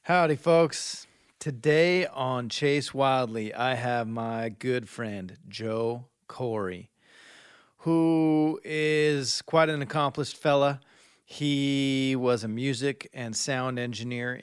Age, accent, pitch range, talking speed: 40-59, American, 100-130 Hz, 110 wpm